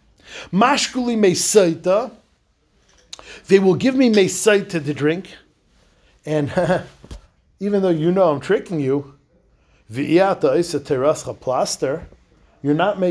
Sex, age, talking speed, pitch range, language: male, 50-69, 75 wpm, 150-195 Hz, English